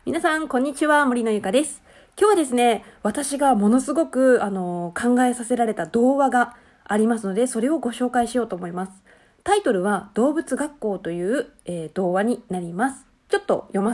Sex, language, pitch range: female, Japanese, 200-275 Hz